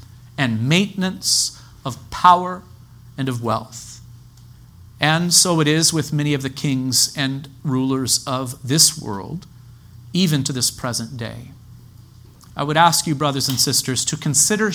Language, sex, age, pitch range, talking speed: English, male, 40-59, 125-185 Hz, 140 wpm